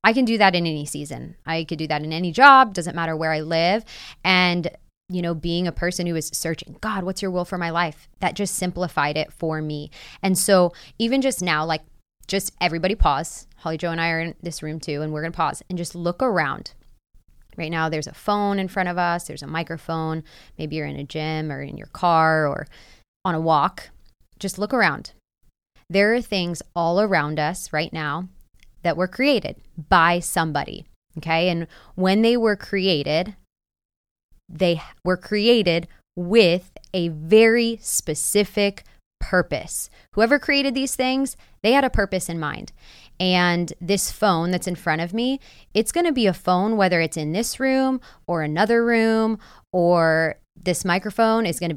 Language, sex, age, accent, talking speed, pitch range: English, female, 20-39, American, 185 wpm, 160-200 Hz